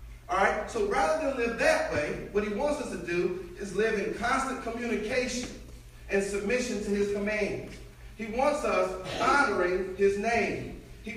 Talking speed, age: 165 wpm, 40-59